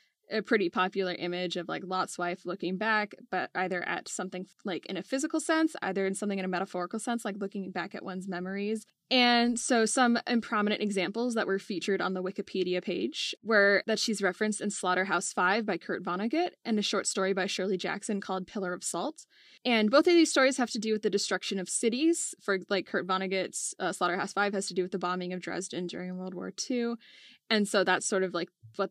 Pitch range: 185-225 Hz